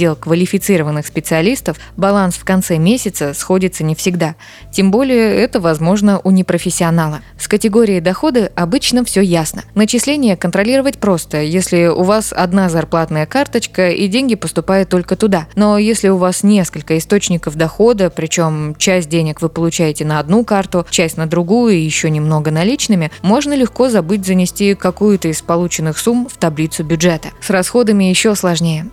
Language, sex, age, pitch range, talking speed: Russian, female, 20-39, 165-210 Hz, 150 wpm